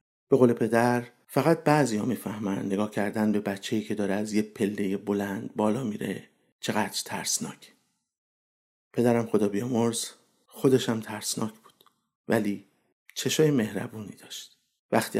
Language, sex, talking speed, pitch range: Persian, male, 125 wpm, 105-125 Hz